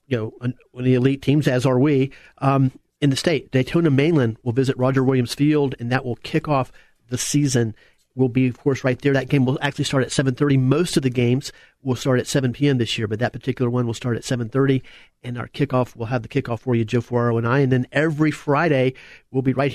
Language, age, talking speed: English, 40-59, 245 wpm